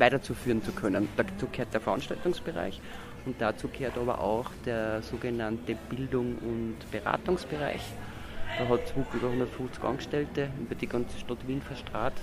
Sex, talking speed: male, 135 wpm